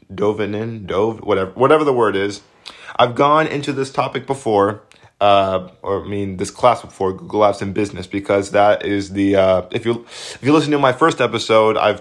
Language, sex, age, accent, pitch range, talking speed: English, male, 20-39, American, 100-125 Hz, 200 wpm